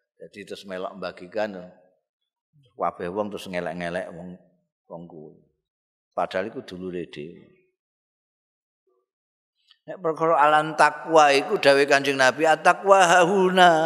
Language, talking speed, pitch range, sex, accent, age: Indonesian, 95 wpm, 145-190 Hz, male, native, 50-69